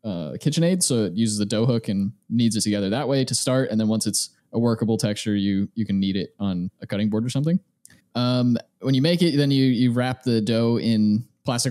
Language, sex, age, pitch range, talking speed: English, male, 20-39, 105-130 Hz, 240 wpm